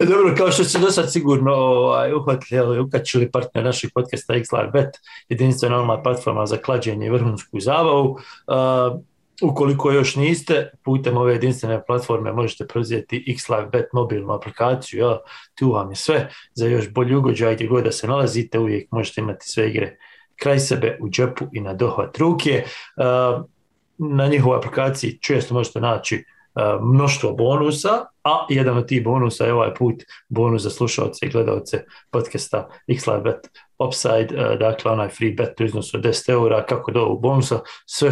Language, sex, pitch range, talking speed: English, male, 115-135 Hz, 155 wpm